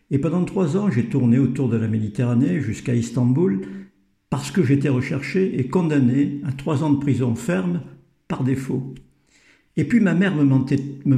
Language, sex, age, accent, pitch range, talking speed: French, male, 60-79, French, 125-145 Hz, 165 wpm